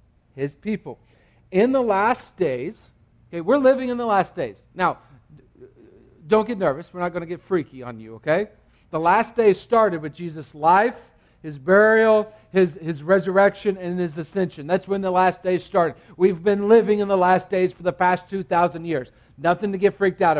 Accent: American